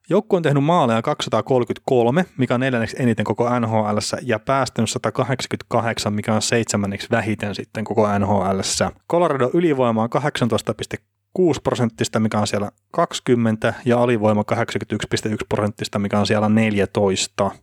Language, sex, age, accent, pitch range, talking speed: Finnish, male, 20-39, native, 105-125 Hz, 125 wpm